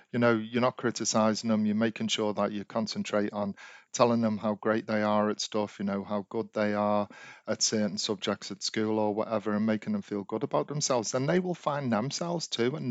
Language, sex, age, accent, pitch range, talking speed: English, male, 40-59, British, 105-130 Hz, 225 wpm